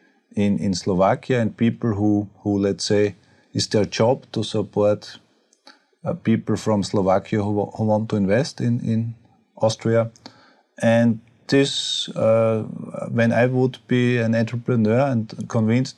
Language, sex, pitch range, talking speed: Slovak, male, 110-125 Hz, 145 wpm